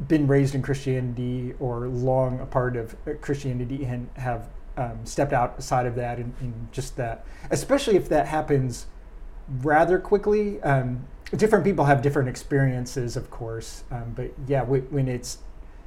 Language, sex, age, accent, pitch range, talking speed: English, male, 30-49, American, 120-140 Hz, 155 wpm